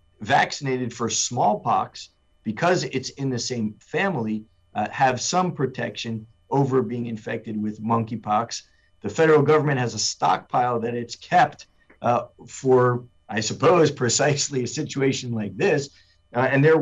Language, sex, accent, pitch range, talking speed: English, male, American, 110-135 Hz, 140 wpm